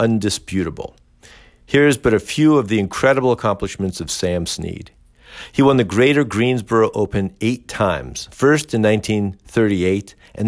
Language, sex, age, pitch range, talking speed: English, male, 50-69, 90-120 Hz, 135 wpm